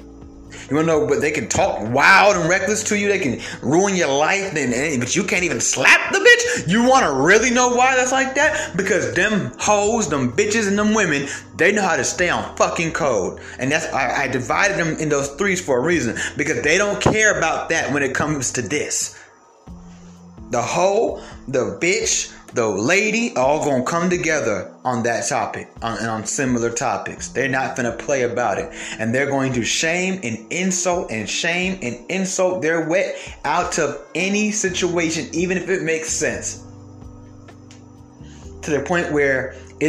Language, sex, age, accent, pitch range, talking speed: English, male, 30-49, American, 120-190 Hz, 195 wpm